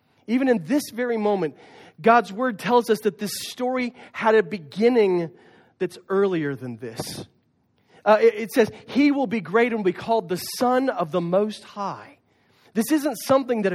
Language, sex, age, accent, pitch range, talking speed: English, male, 40-59, American, 180-235 Hz, 175 wpm